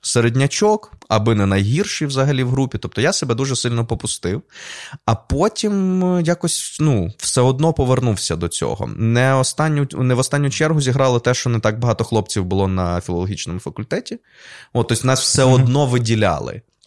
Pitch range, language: 105-140 Hz, Ukrainian